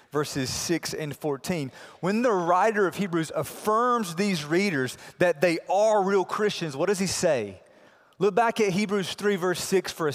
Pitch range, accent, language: 165-230 Hz, American, English